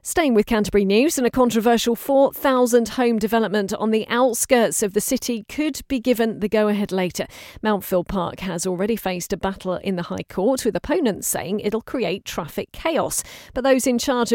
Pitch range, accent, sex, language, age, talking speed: 195-240 Hz, British, female, English, 40-59, 185 wpm